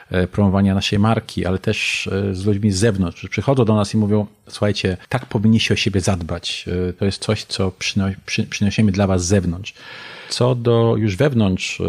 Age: 40-59